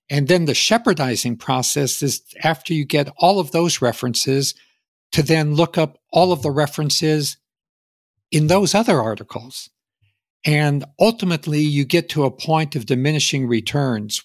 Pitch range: 125-150 Hz